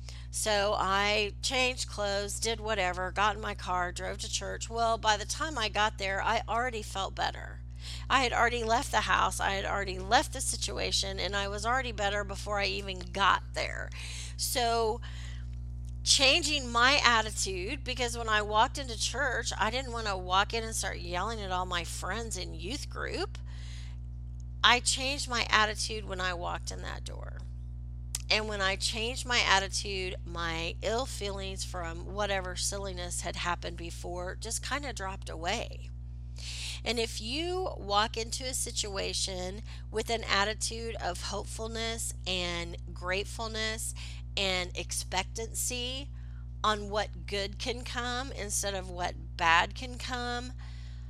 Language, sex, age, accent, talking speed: English, female, 40-59, American, 150 wpm